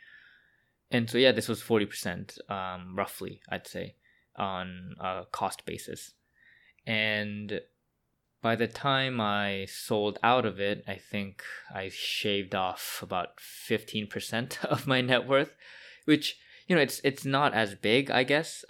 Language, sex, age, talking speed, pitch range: English, male, 20-39, 140 wpm, 95-110 Hz